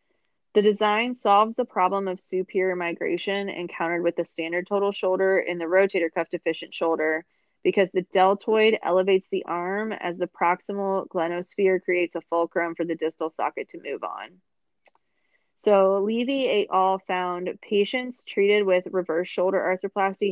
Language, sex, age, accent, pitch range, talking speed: English, female, 20-39, American, 175-200 Hz, 150 wpm